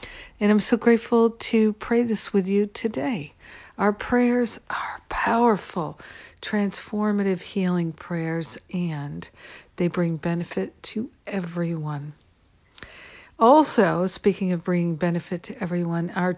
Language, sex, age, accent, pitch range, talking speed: English, female, 60-79, American, 175-205 Hz, 115 wpm